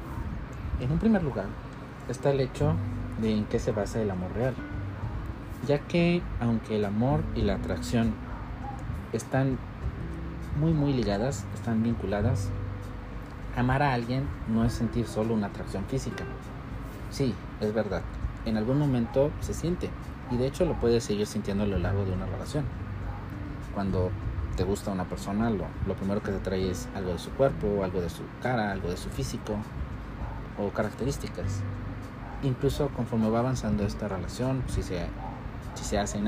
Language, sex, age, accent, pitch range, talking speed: Spanish, male, 40-59, Mexican, 100-125 Hz, 160 wpm